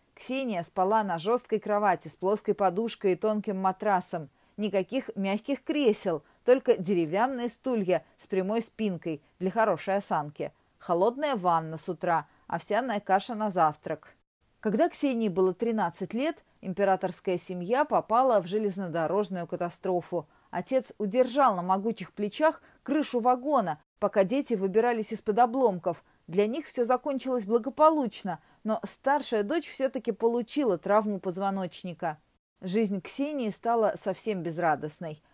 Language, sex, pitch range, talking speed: Russian, female, 180-240 Hz, 120 wpm